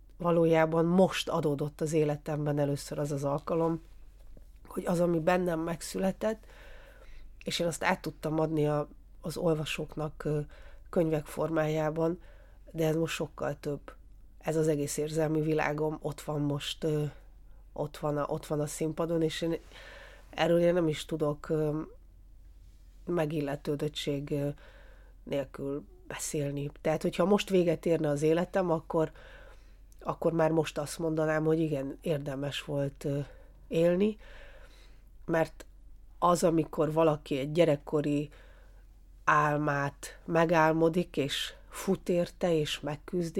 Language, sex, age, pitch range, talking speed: Hungarian, female, 30-49, 145-165 Hz, 115 wpm